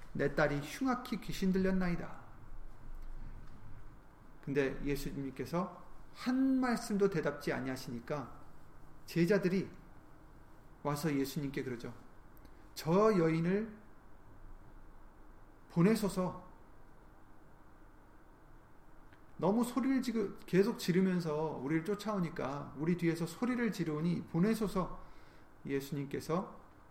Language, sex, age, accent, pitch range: Korean, male, 30-49, native, 135-180 Hz